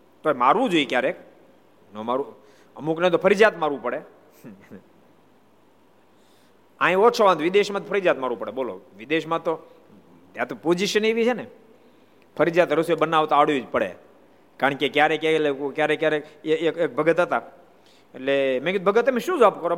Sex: male